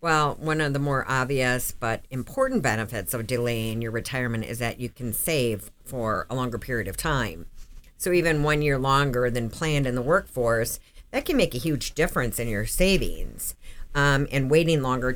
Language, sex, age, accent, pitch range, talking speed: English, female, 50-69, American, 125-155 Hz, 185 wpm